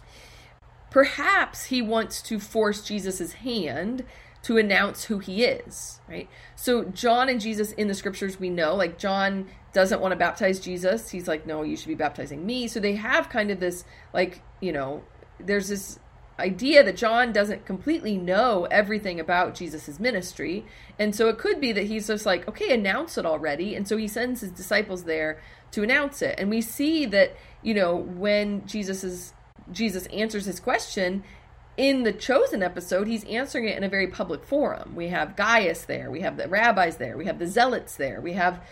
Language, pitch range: English, 180-230 Hz